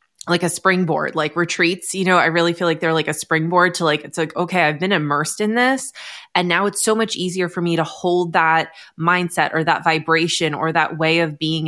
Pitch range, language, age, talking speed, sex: 155-180 Hz, English, 20-39, 230 wpm, female